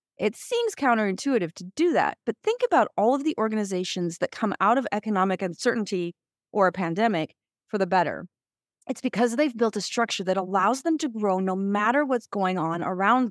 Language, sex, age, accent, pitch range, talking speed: English, female, 30-49, American, 180-250 Hz, 190 wpm